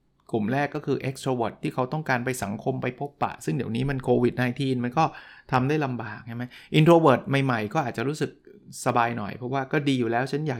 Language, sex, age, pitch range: Thai, male, 20-39, 120-150 Hz